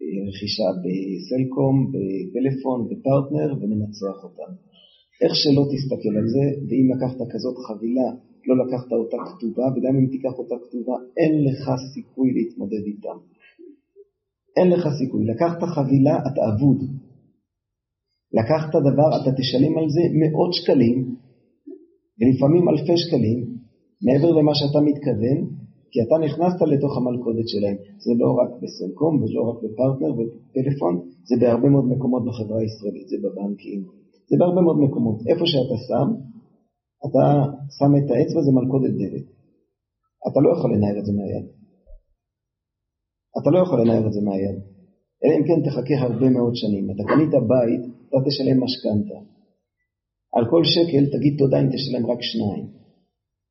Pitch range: 115-145 Hz